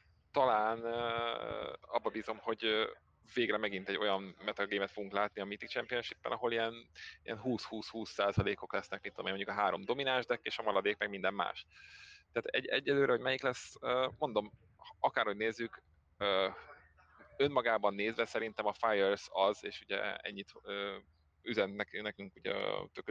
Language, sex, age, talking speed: Hungarian, male, 20-39, 160 wpm